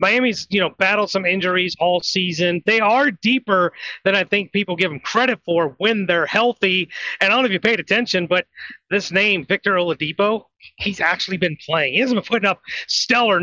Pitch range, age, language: 180-235 Hz, 30-49, English